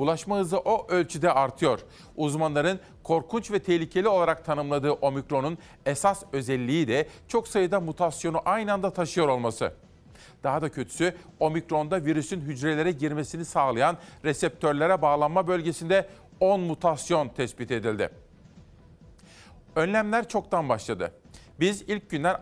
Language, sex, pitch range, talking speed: Turkish, male, 150-185 Hz, 115 wpm